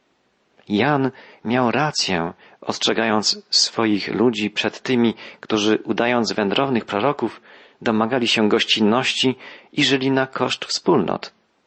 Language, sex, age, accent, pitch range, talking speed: Polish, male, 40-59, native, 110-140 Hz, 105 wpm